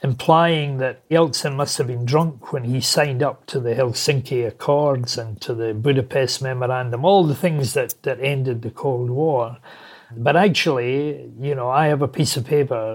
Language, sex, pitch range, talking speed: English, male, 120-145 Hz, 180 wpm